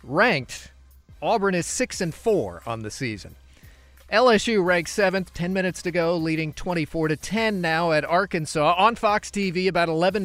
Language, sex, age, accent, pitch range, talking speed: English, male, 40-59, American, 145-180 Hz, 140 wpm